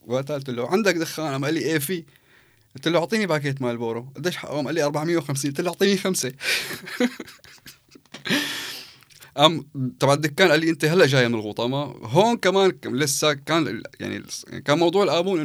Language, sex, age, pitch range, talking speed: Arabic, male, 20-39, 120-150 Hz, 175 wpm